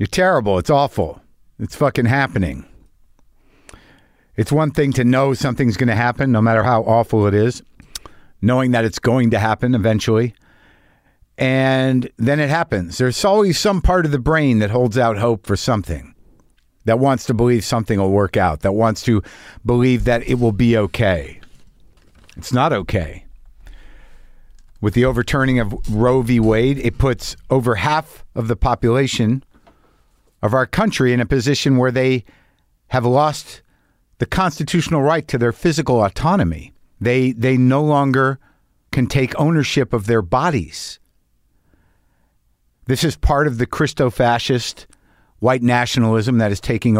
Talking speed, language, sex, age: 150 wpm, English, male, 50-69